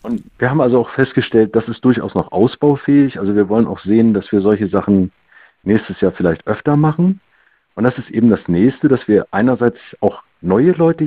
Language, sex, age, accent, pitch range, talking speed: German, male, 50-69, German, 105-140 Hz, 200 wpm